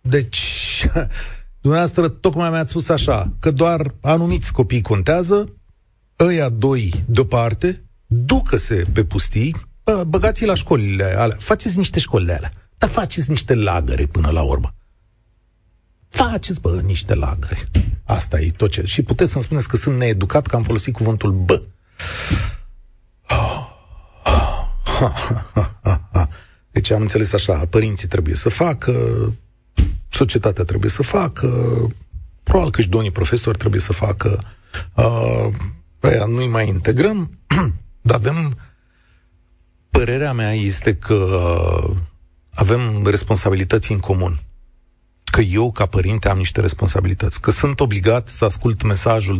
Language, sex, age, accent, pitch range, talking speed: Romanian, male, 40-59, native, 90-120 Hz, 125 wpm